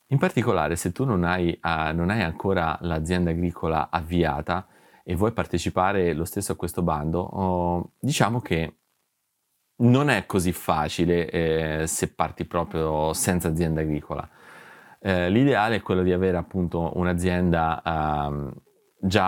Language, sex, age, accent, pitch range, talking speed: Italian, male, 30-49, native, 80-95 Hz, 130 wpm